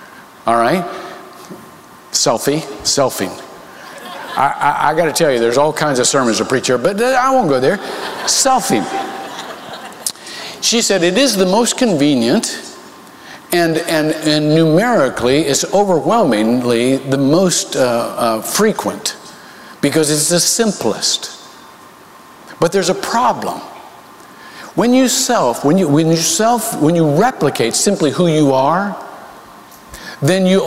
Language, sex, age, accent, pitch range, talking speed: English, male, 50-69, American, 135-195 Hz, 135 wpm